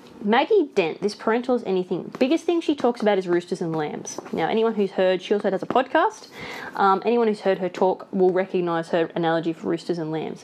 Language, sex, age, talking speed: English, female, 20-39, 220 wpm